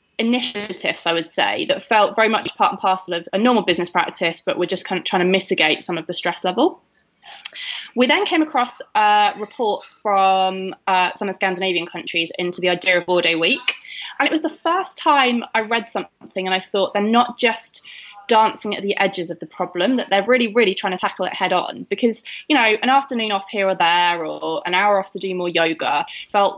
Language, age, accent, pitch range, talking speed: English, 20-39, British, 175-215 Hz, 225 wpm